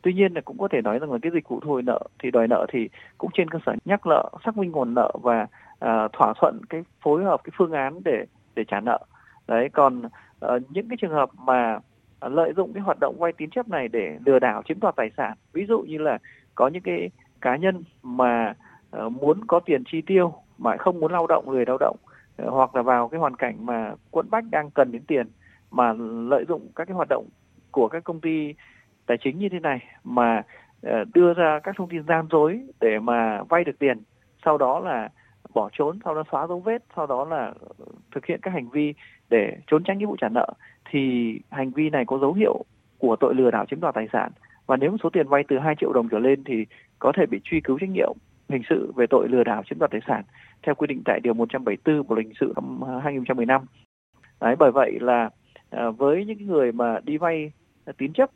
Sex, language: male, Vietnamese